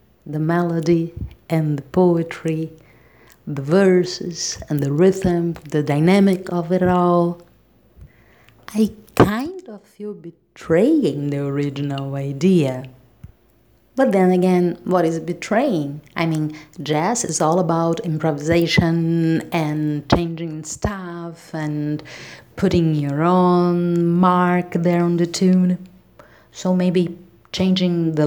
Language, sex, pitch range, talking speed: English, female, 145-180 Hz, 110 wpm